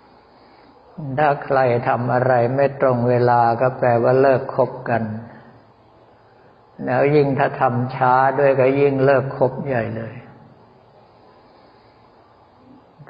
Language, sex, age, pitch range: Thai, male, 60-79, 120-135 Hz